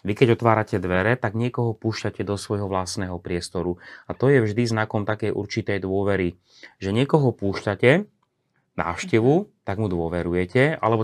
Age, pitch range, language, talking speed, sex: 30-49, 95-115 Hz, Slovak, 150 wpm, male